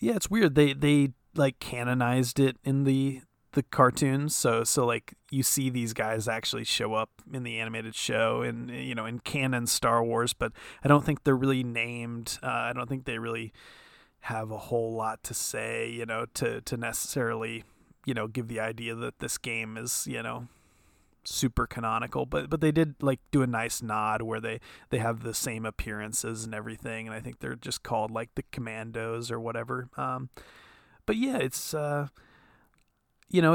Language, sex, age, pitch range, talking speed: English, male, 30-49, 115-135 Hz, 190 wpm